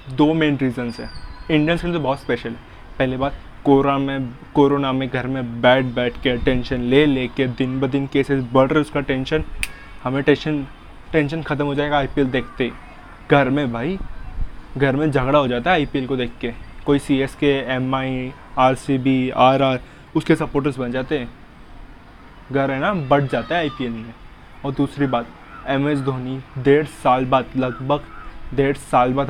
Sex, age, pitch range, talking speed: male, 20-39, 125-150 Hz, 180 wpm